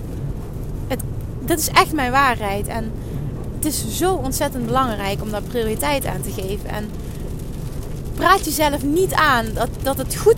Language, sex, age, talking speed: Dutch, female, 30-49, 150 wpm